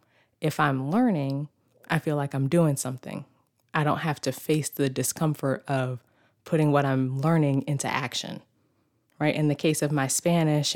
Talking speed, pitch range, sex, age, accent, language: 165 wpm, 135-165 Hz, female, 20-39, American, English